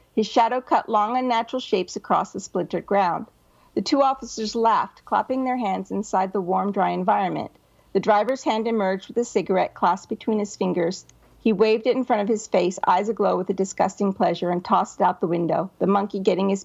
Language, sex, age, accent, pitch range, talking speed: English, female, 50-69, American, 195-255 Hz, 205 wpm